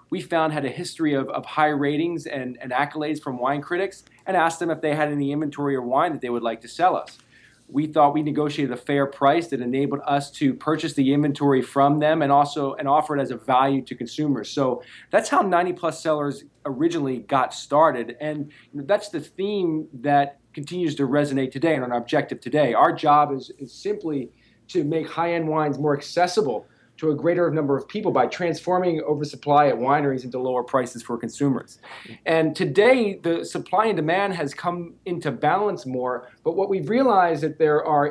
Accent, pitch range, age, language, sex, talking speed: American, 135-170 Hz, 20-39, English, male, 200 wpm